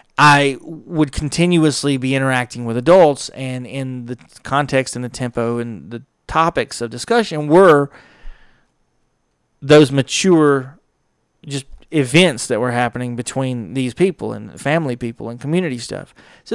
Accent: American